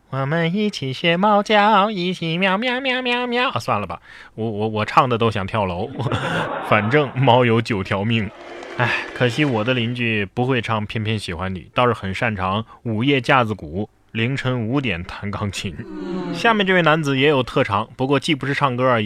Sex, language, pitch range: male, Chinese, 110-165 Hz